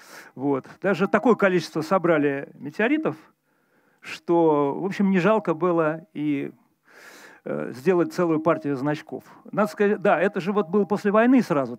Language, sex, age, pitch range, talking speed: Russian, male, 40-59, 150-195 Hz, 145 wpm